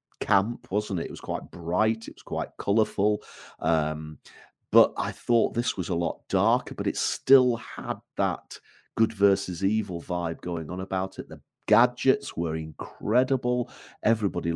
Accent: British